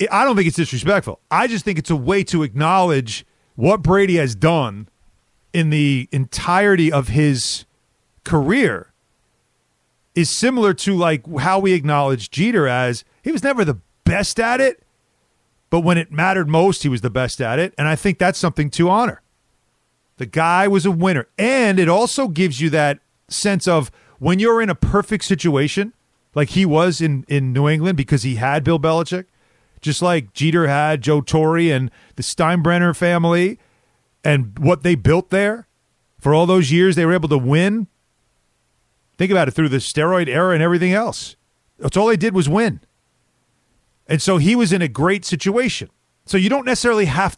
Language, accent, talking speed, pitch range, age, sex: English, American, 180 wpm, 145-195 Hz, 40-59, male